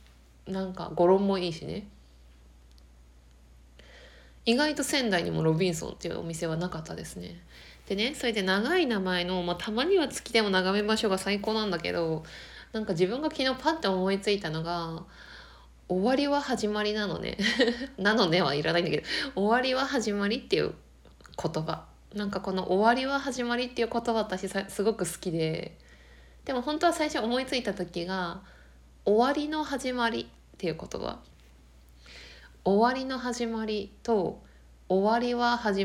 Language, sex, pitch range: Japanese, female, 160-220 Hz